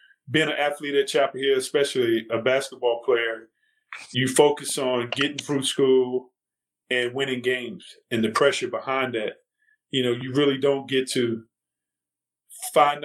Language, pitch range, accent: English, 125-150 Hz, American